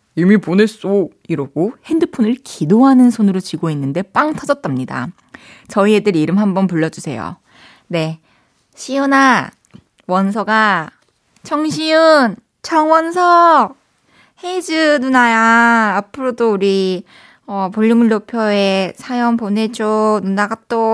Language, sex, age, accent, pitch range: Korean, female, 20-39, native, 190-260 Hz